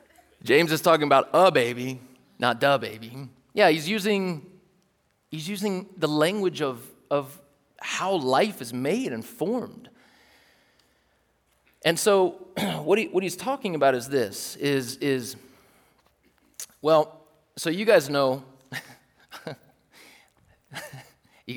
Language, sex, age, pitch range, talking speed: English, male, 30-49, 130-185 Hz, 115 wpm